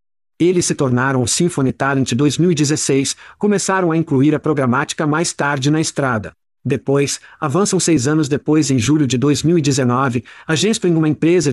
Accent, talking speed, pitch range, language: Brazilian, 150 wpm, 140-170 Hz, Portuguese